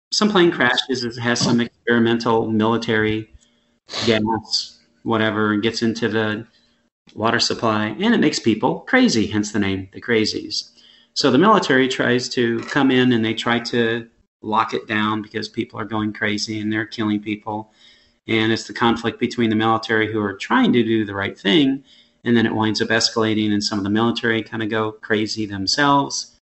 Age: 30-49